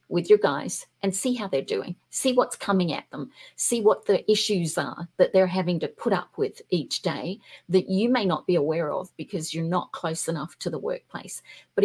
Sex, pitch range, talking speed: female, 175-210 Hz, 220 wpm